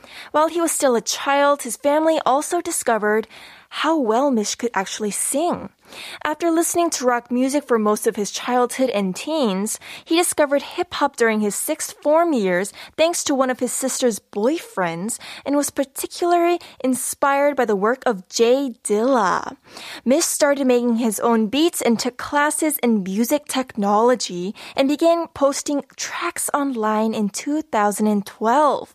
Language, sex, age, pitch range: Korean, female, 10-29, 230-300 Hz